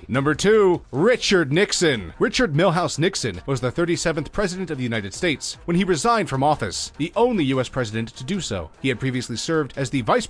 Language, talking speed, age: English, 200 wpm, 30-49